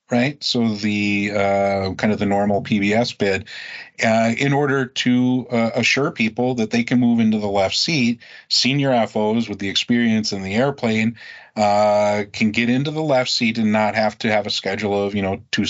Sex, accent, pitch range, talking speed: male, American, 95-115 Hz, 195 wpm